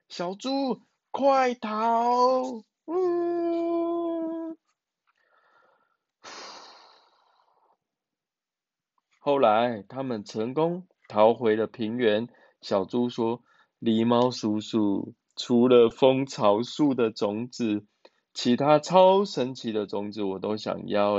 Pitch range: 115-195 Hz